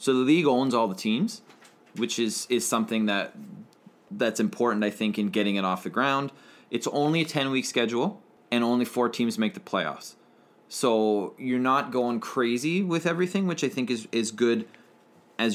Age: 20-39